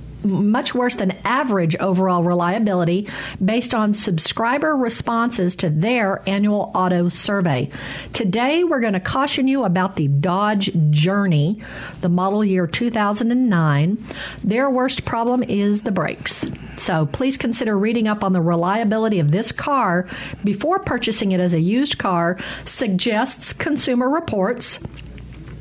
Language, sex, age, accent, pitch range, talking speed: English, female, 50-69, American, 185-240 Hz, 130 wpm